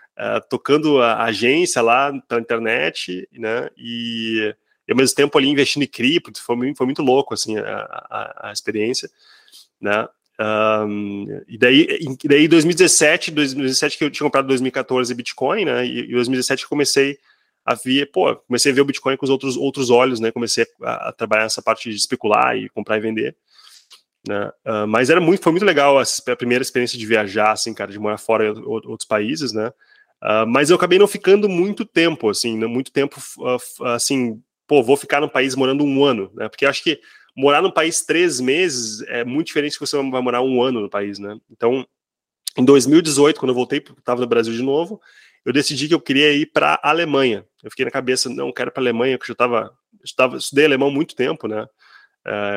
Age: 20-39